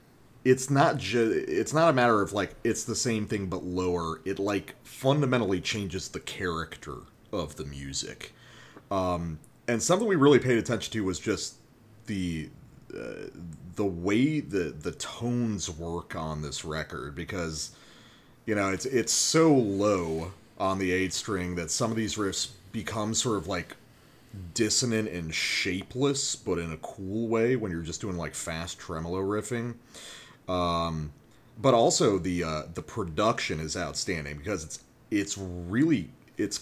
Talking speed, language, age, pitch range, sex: 155 wpm, English, 30-49, 85-110 Hz, male